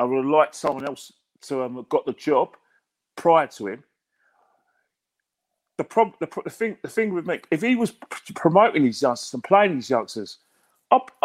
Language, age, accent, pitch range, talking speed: English, 40-59, British, 120-175 Hz, 185 wpm